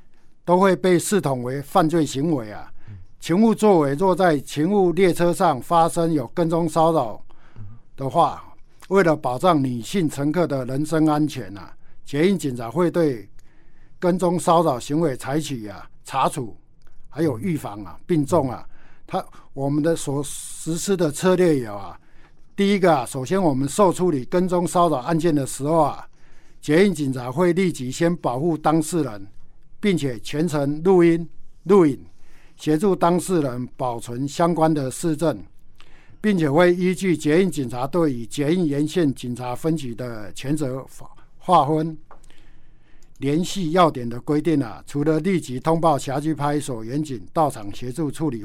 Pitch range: 130-170 Hz